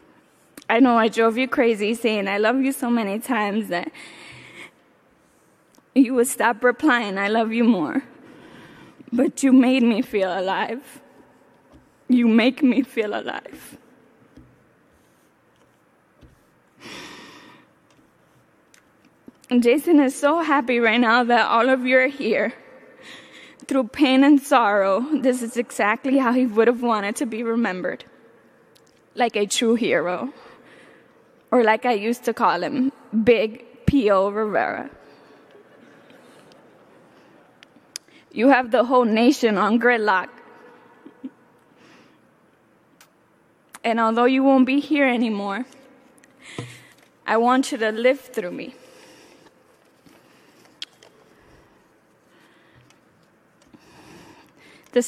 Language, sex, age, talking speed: English, female, 10-29, 105 wpm